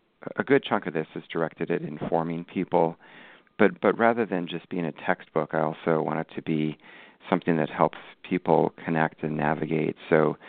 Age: 40-59